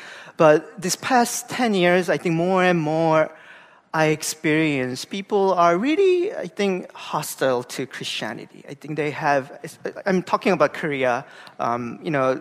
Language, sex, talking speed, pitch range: English, male, 150 wpm, 145-190 Hz